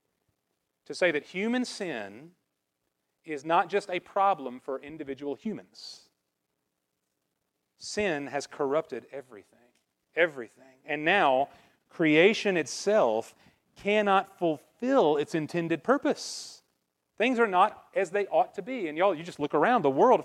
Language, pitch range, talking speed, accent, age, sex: English, 125-190 Hz, 125 wpm, American, 40-59, male